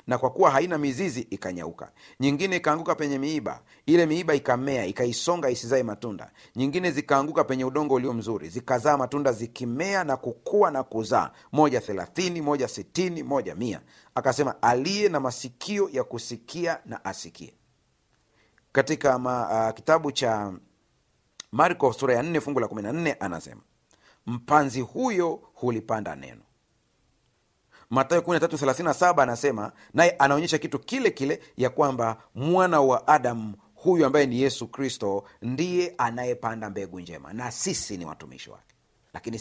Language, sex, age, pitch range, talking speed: Swahili, male, 40-59, 115-155 Hz, 135 wpm